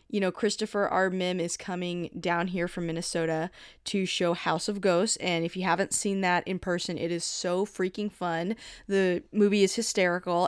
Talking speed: 190 wpm